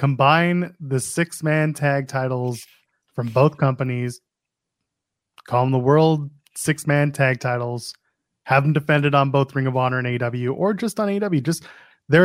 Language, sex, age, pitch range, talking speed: English, male, 20-39, 135-160 Hz, 160 wpm